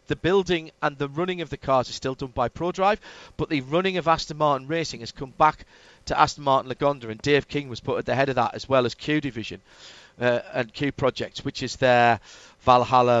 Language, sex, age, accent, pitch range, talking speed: English, male, 40-59, British, 125-165 Hz, 225 wpm